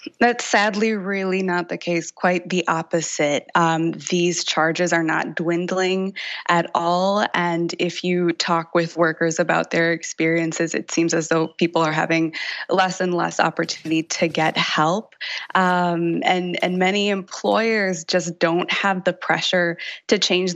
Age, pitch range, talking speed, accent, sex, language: 20-39, 165-185 Hz, 150 wpm, American, female, English